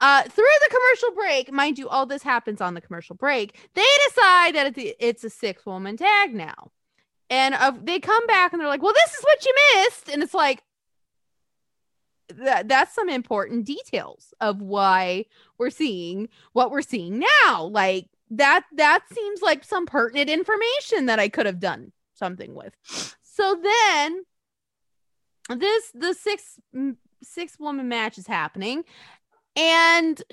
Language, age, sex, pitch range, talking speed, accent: English, 20-39, female, 250-390 Hz, 155 wpm, American